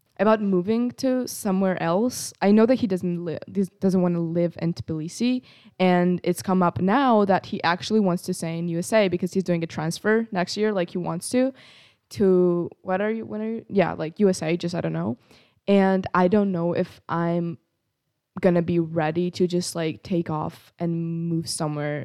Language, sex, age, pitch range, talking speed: English, female, 20-39, 165-190 Hz, 195 wpm